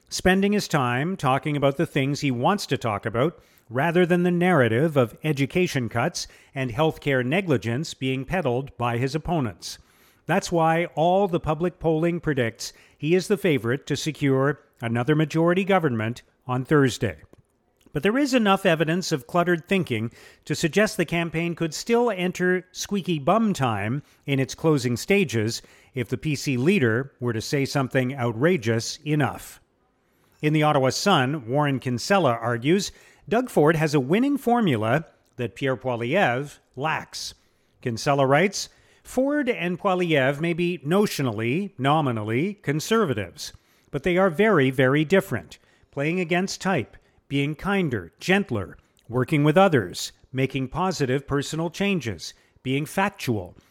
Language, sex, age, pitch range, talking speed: English, male, 50-69, 125-180 Hz, 140 wpm